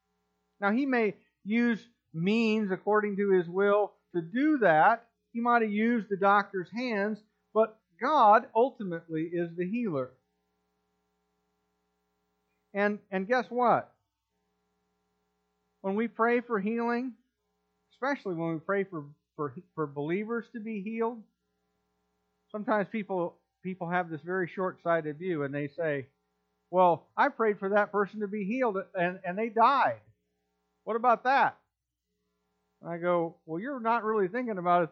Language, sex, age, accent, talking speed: English, male, 50-69, American, 140 wpm